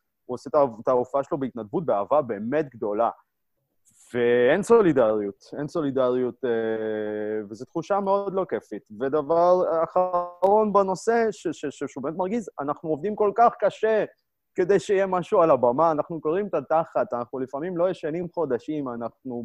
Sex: male